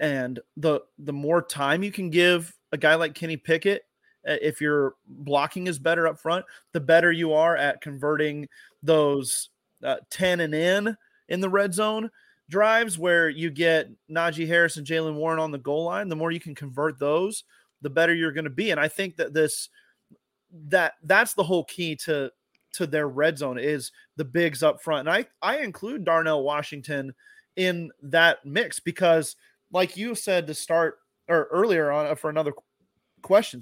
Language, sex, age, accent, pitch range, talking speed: English, male, 30-49, American, 150-180 Hz, 180 wpm